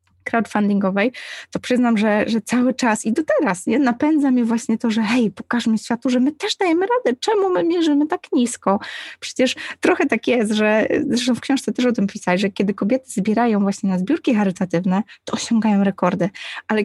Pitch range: 210-260 Hz